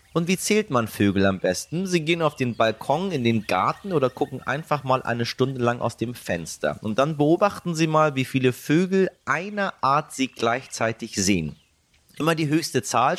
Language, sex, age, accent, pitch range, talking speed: German, male, 30-49, German, 105-140 Hz, 190 wpm